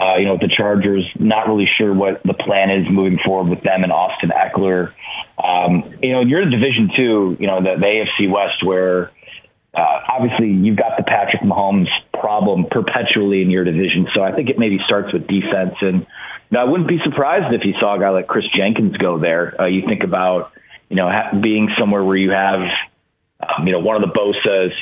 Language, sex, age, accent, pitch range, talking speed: English, male, 30-49, American, 90-110 Hz, 210 wpm